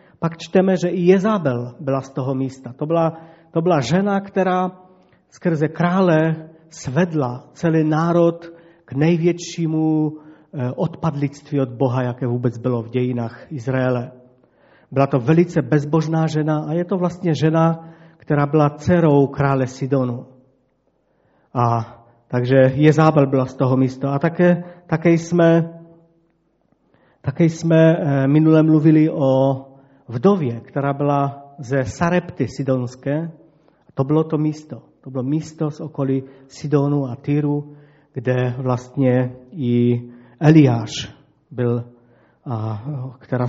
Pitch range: 130-165 Hz